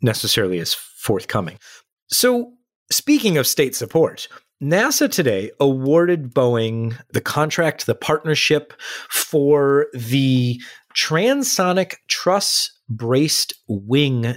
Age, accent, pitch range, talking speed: 30-49, American, 115-160 Hz, 90 wpm